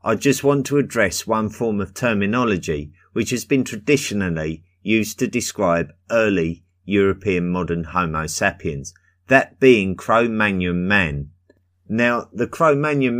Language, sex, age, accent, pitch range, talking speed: English, male, 30-49, British, 90-115 Hz, 125 wpm